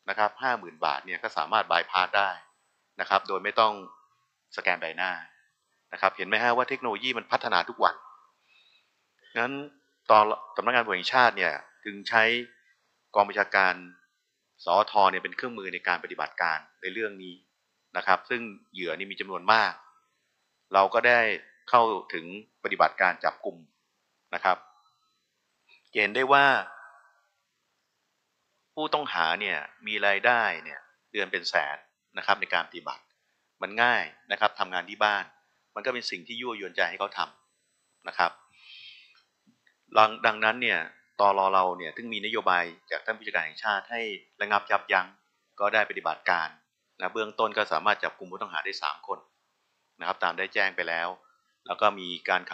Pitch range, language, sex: 95-110 Hz, Thai, male